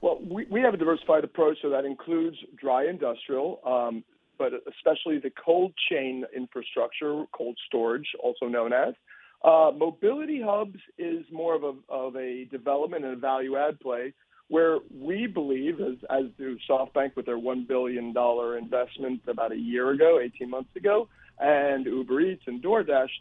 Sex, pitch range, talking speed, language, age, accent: male, 130-165 Hz, 165 wpm, English, 50-69, American